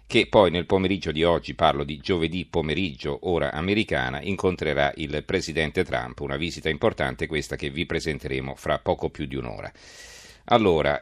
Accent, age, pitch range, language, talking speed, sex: native, 40-59, 75-95 Hz, Italian, 160 wpm, male